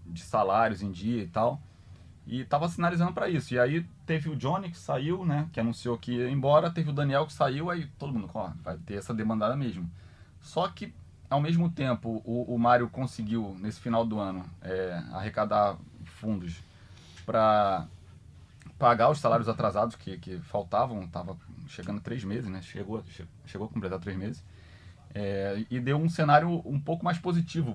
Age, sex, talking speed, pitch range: 20-39, male, 175 wpm, 95-130 Hz